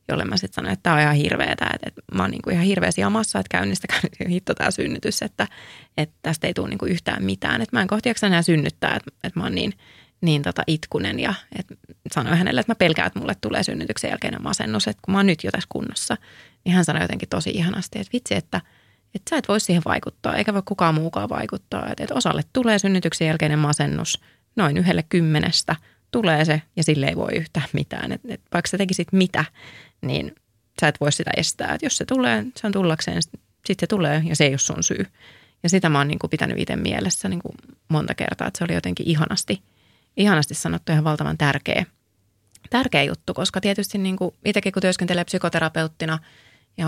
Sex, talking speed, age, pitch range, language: female, 205 wpm, 30-49, 150-185 Hz, Finnish